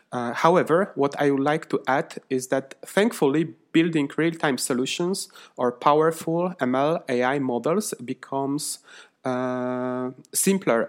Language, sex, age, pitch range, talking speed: English, male, 30-49, 125-155 Hz, 120 wpm